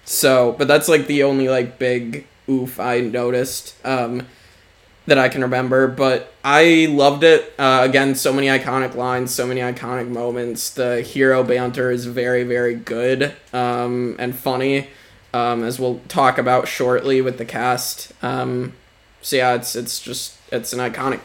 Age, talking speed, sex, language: 20-39, 165 wpm, male, English